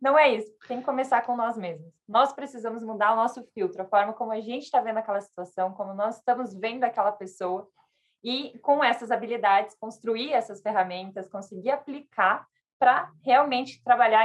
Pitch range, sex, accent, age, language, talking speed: 205-255 Hz, female, Brazilian, 20-39, Portuguese, 175 wpm